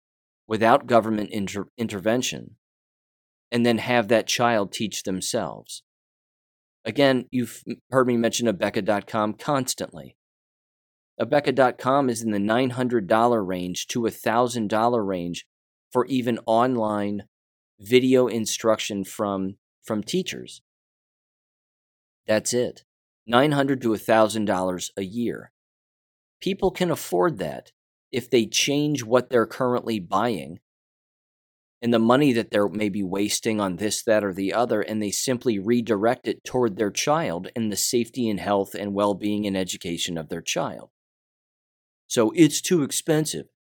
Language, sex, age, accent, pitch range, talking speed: English, male, 30-49, American, 100-125 Hz, 120 wpm